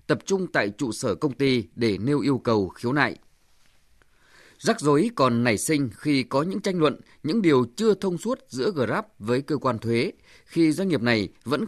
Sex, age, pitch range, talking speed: male, 20-39, 120-170 Hz, 200 wpm